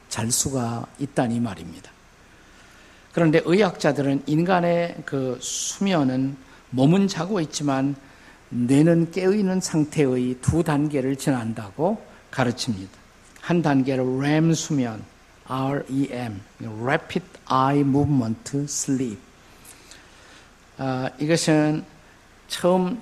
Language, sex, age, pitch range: Korean, male, 50-69, 125-160 Hz